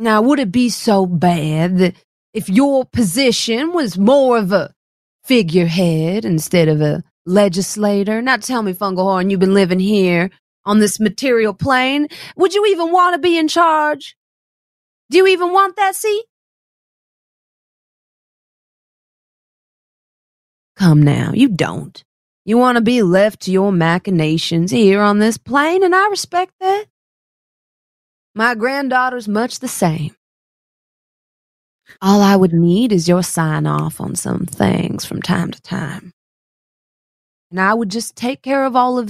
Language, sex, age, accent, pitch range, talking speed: English, female, 30-49, American, 180-255 Hz, 145 wpm